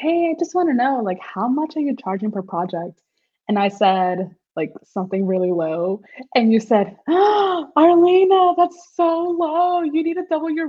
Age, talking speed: 20-39, 190 wpm